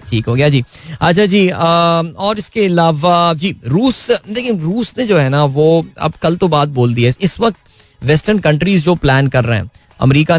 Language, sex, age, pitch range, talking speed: Hindi, male, 20-39, 120-160 Hz, 200 wpm